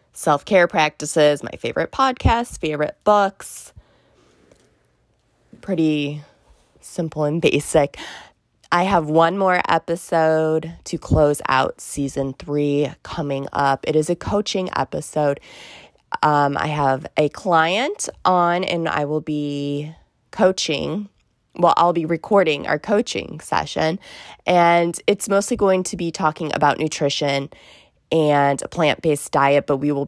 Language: English